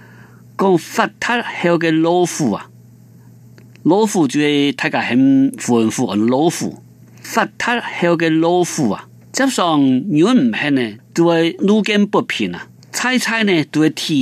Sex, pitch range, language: male, 115-180 Hz, Chinese